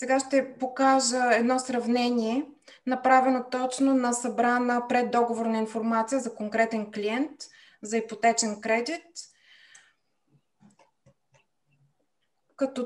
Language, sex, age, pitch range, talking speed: Bulgarian, female, 20-39, 230-270 Hz, 85 wpm